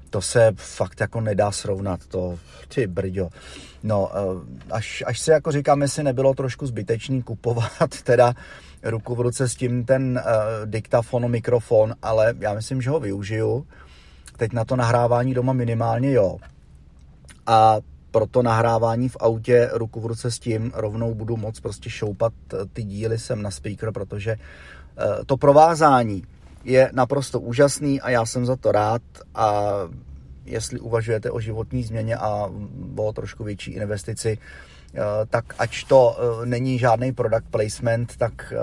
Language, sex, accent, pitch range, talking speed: Czech, male, native, 100-125 Hz, 150 wpm